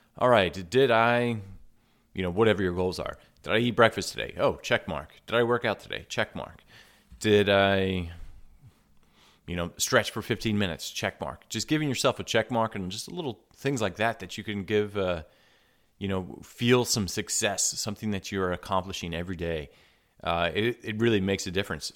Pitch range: 90-110 Hz